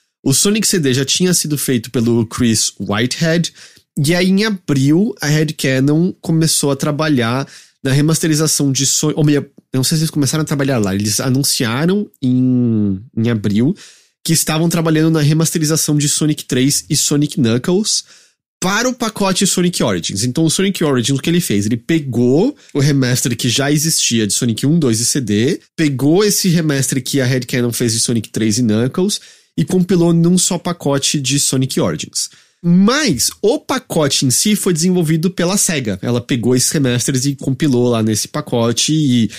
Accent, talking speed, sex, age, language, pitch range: Brazilian, 170 wpm, male, 20-39, English, 120-170 Hz